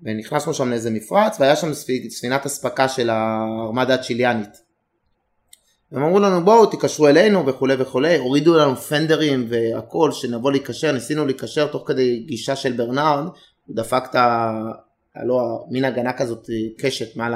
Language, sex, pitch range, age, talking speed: Hebrew, male, 115-145 Hz, 30-49, 140 wpm